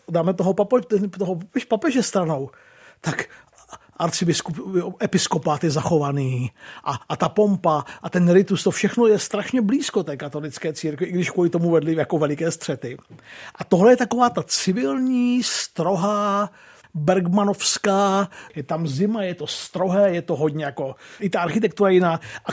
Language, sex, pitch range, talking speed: Czech, male, 165-205 Hz, 150 wpm